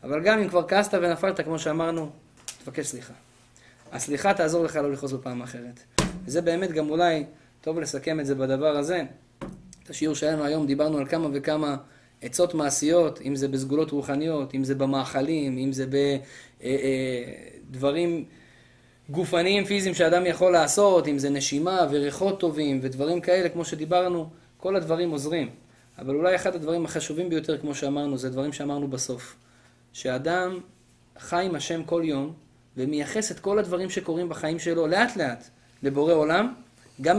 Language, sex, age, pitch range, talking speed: Hebrew, male, 20-39, 135-180 Hz, 150 wpm